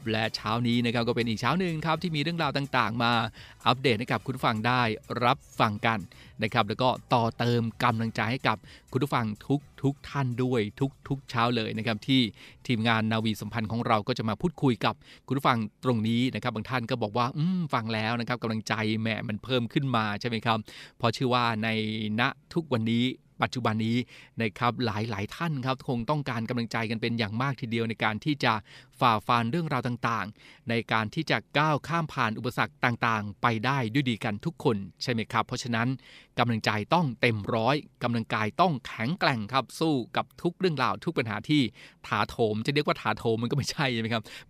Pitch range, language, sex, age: 115-135 Hz, Thai, male, 20-39